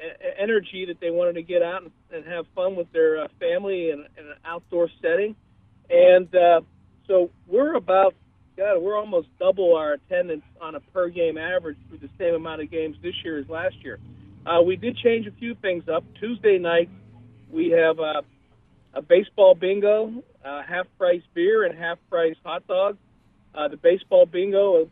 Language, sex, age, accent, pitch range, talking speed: English, male, 50-69, American, 165-210 Hz, 180 wpm